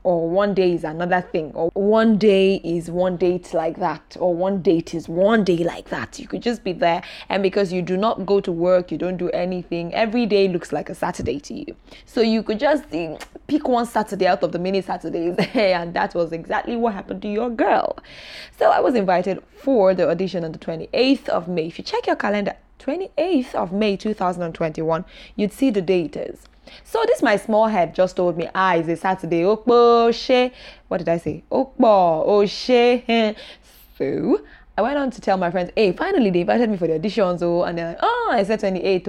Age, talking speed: 20-39, 210 wpm